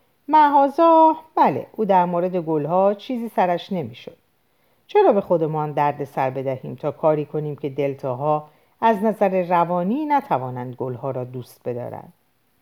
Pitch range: 150-225 Hz